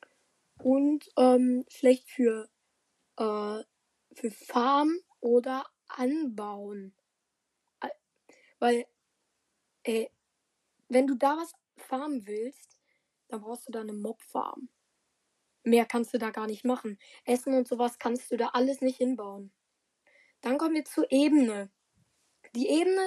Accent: German